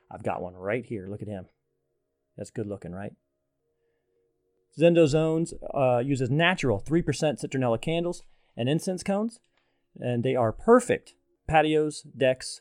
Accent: American